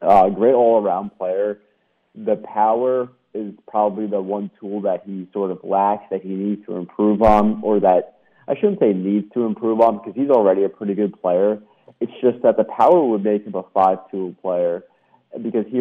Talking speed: 195 wpm